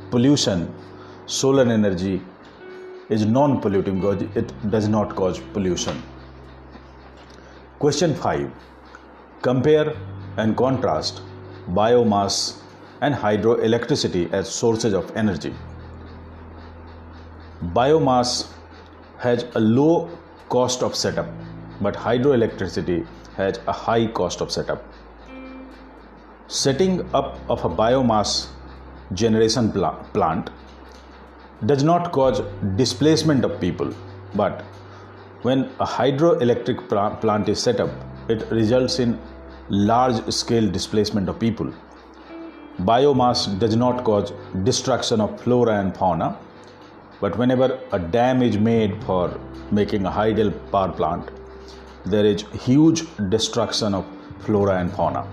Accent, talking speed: native, 105 wpm